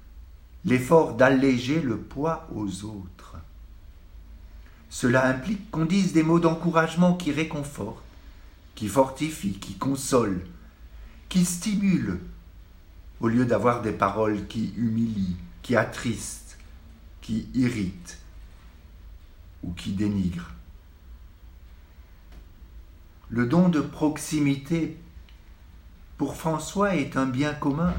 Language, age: French, 60-79